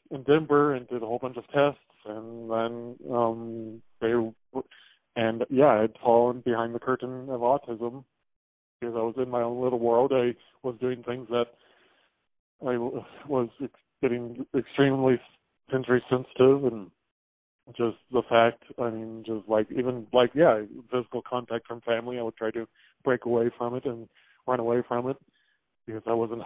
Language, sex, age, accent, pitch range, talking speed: English, male, 20-39, American, 115-130 Hz, 165 wpm